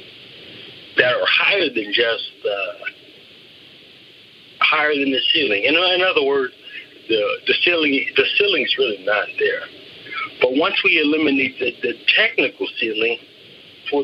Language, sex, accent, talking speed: English, male, American, 125 wpm